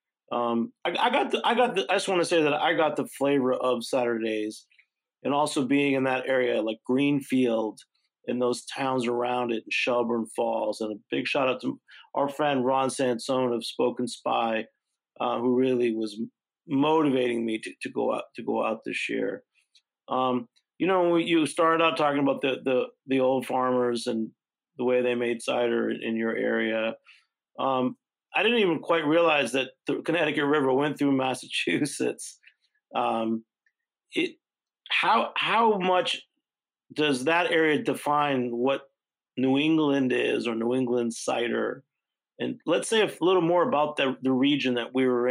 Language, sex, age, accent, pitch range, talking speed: English, male, 40-59, American, 120-150 Hz, 170 wpm